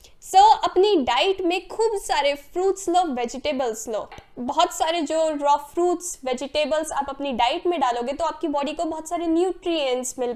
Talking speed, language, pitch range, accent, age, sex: 175 wpm, Hindi, 275-355 Hz, native, 10-29, female